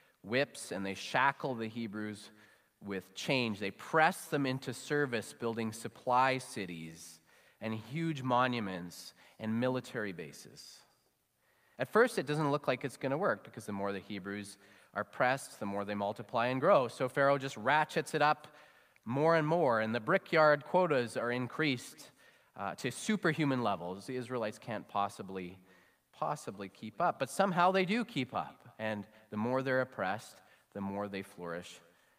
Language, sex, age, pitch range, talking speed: English, male, 30-49, 90-130 Hz, 160 wpm